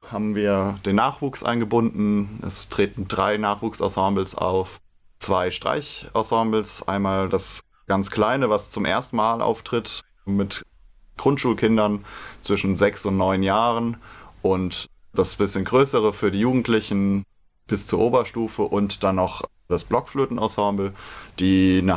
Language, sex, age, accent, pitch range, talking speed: German, male, 20-39, German, 95-110 Hz, 125 wpm